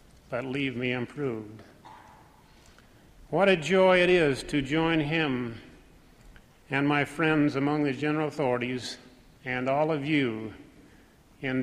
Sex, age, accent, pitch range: male, 50-69, American, 125-155 Hz